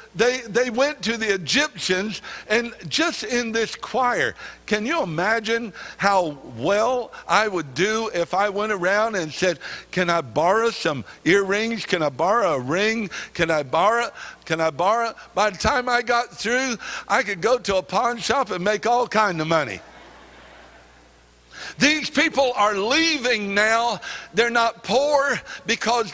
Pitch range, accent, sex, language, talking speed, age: 190-250 Hz, American, male, English, 160 wpm, 60-79